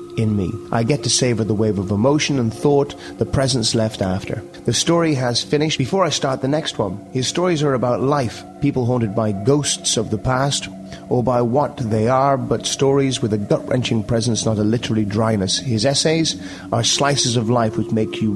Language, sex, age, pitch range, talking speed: English, male, 30-49, 105-135 Hz, 205 wpm